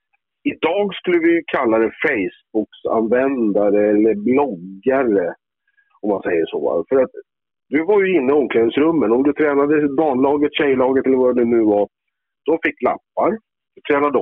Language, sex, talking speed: Swedish, male, 150 wpm